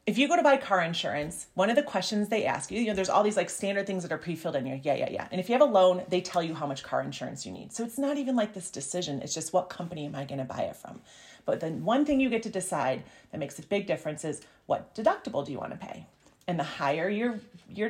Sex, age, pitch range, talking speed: female, 30-49, 165-210 Hz, 300 wpm